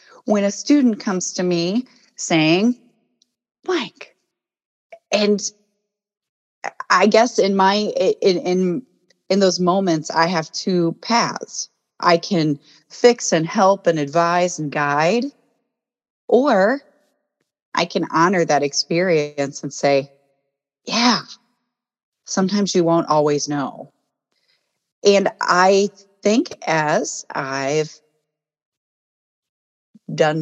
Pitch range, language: 150-210 Hz, English